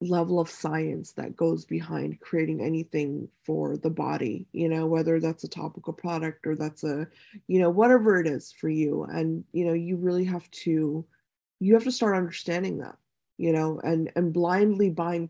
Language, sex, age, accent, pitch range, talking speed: English, female, 20-39, American, 160-190 Hz, 185 wpm